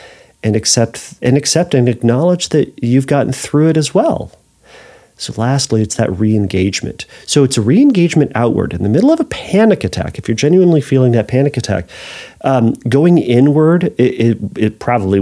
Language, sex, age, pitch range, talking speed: English, male, 40-59, 105-130 Hz, 175 wpm